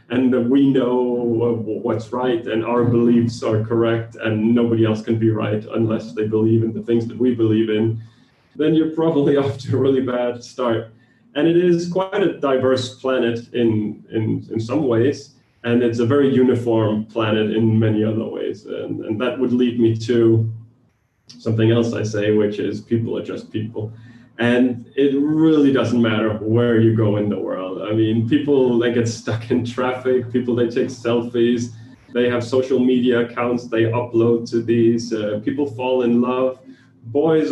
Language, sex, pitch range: English, male, 115-130 Hz